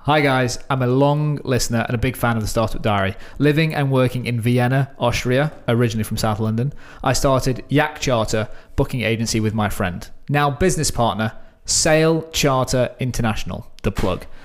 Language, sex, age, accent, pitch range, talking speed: English, male, 20-39, British, 110-140 Hz, 170 wpm